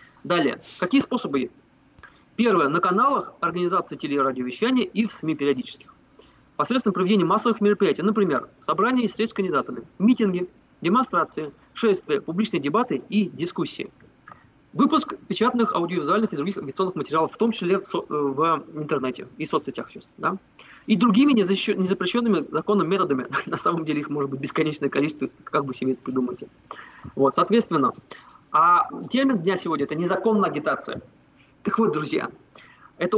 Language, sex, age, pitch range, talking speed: Russian, male, 20-39, 155-210 Hz, 135 wpm